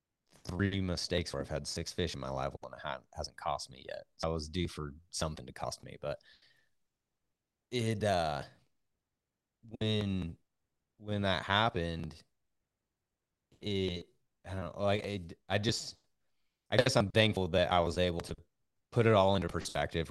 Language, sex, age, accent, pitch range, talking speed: English, male, 30-49, American, 75-95 Hz, 160 wpm